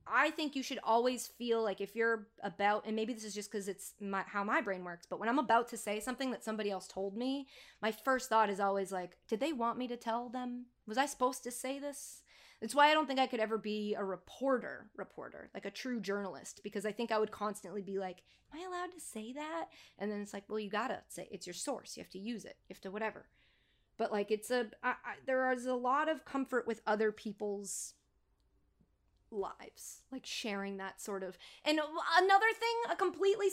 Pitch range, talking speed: 210-285 Hz, 230 wpm